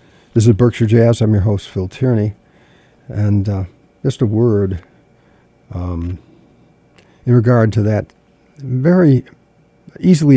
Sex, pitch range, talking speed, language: male, 100-125 Hz, 120 wpm, English